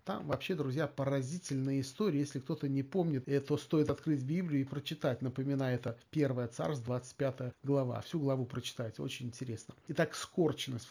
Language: Russian